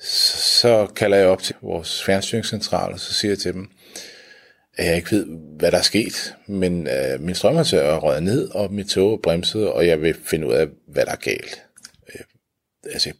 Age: 30-49